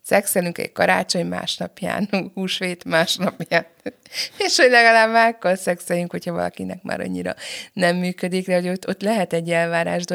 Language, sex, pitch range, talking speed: Hungarian, female, 155-175 Hz, 135 wpm